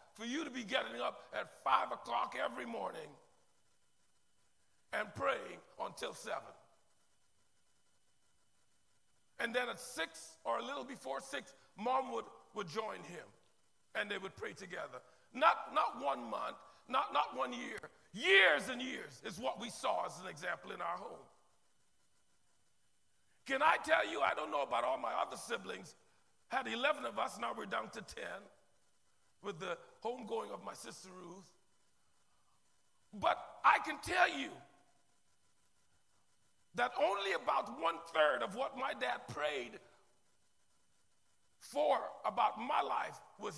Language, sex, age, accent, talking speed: English, male, 50-69, American, 145 wpm